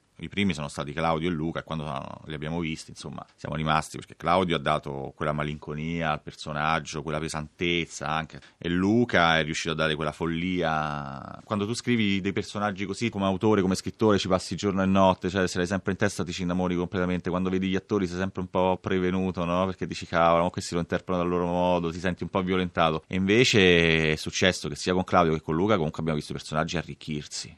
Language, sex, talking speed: Italian, male, 220 wpm